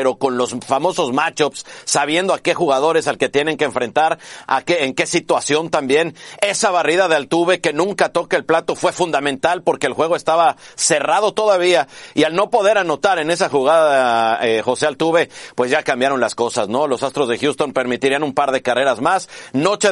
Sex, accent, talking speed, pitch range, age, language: male, Mexican, 195 wpm, 140-195 Hz, 50-69, Spanish